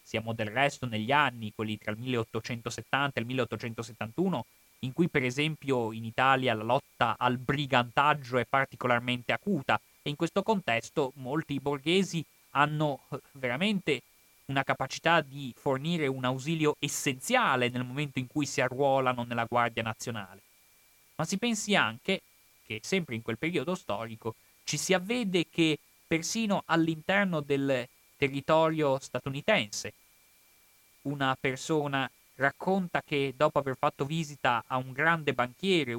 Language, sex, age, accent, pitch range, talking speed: Italian, male, 30-49, native, 125-170 Hz, 135 wpm